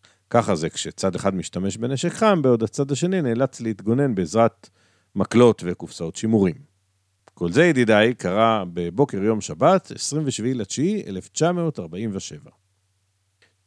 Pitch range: 95-140 Hz